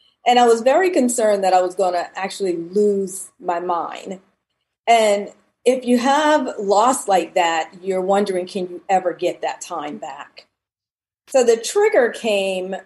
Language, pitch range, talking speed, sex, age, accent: English, 180-235 Hz, 160 wpm, female, 40-59, American